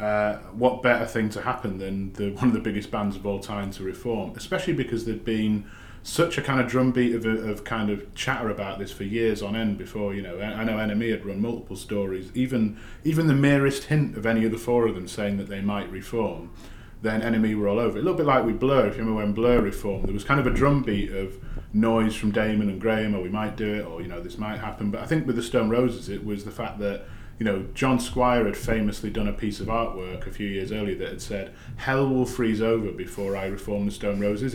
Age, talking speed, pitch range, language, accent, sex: 30-49, 255 wpm, 100-120 Hz, English, British, male